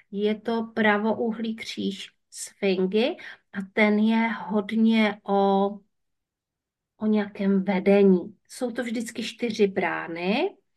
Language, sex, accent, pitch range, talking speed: Czech, female, native, 195-225 Hz, 100 wpm